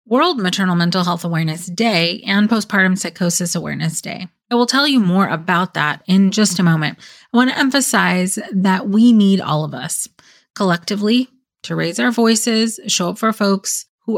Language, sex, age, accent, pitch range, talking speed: English, female, 30-49, American, 170-215 Hz, 180 wpm